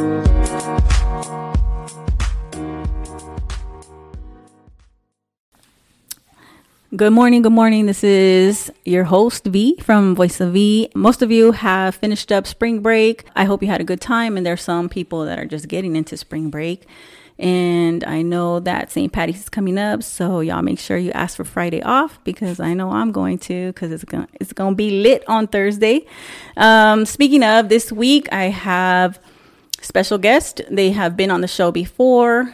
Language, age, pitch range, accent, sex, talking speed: English, 30-49, 170-220 Hz, American, female, 160 wpm